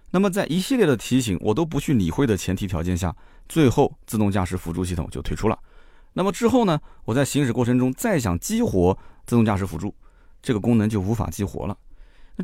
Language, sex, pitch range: Chinese, male, 90-130 Hz